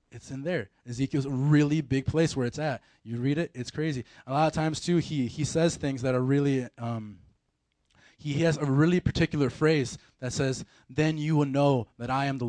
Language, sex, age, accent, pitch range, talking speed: English, male, 20-39, American, 120-165 Hz, 220 wpm